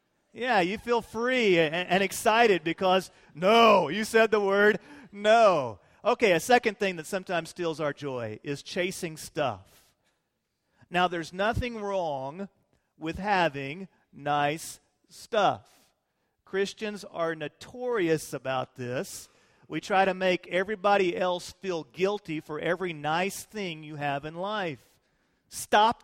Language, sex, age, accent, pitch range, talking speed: English, male, 40-59, American, 145-195 Hz, 125 wpm